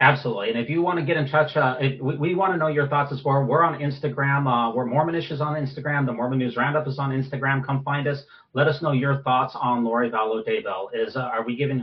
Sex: male